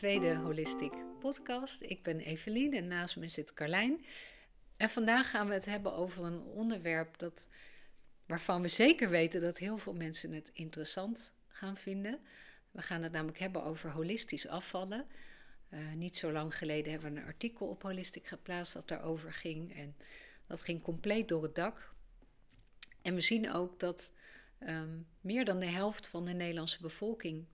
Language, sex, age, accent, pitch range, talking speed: Dutch, female, 50-69, Dutch, 160-205 Hz, 165 wpm